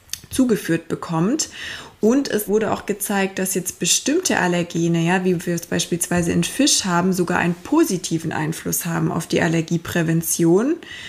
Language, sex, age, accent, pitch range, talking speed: German, female, 20-39, German, 175-210 Hz, 145 wpm